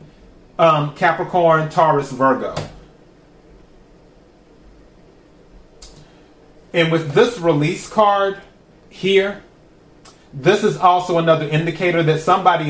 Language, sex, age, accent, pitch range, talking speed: English, male, 30-49, American, 145-175 Hz, 80 wpm